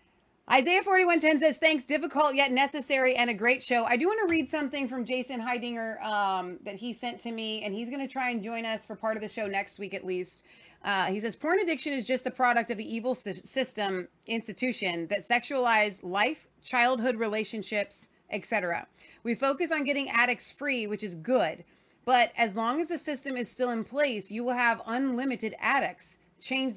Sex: female